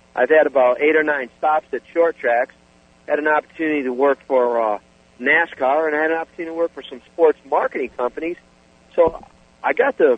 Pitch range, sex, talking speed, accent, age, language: 110-150 Hz, male, 200 wpm, American, 50-69, English